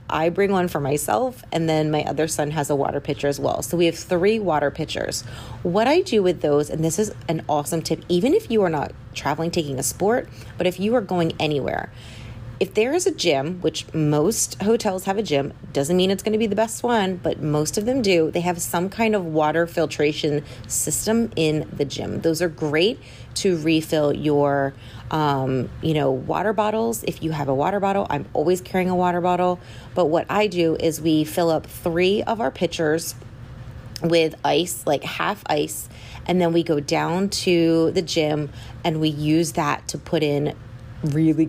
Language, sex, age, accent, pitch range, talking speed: English, female, 30-49, American, 145-175 Hz, 200 wpm